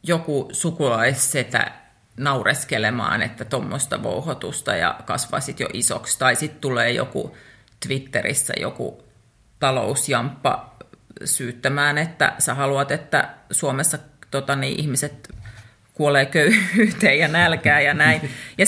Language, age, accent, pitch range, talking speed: Finnish, 30-49, native, 130-175 Hz, 110 wpm